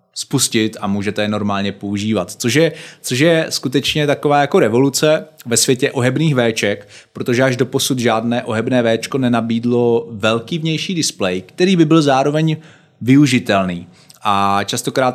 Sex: male